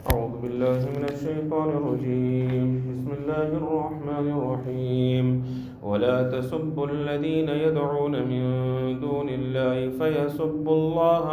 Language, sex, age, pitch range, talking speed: English, male, 40-59, 135-170 Hz, 105 wpm